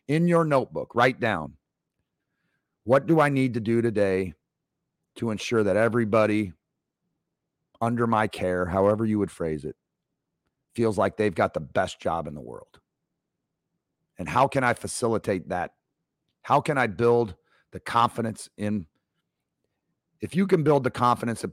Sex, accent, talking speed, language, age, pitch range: male, American, 150 wpm, English, 40-59, 105-130 Hz